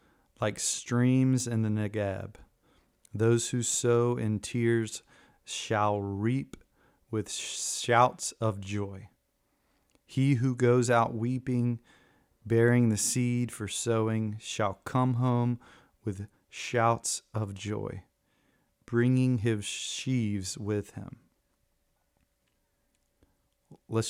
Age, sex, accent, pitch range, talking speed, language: 30-49, male, American, 100-115 Hz, 95 wpm, English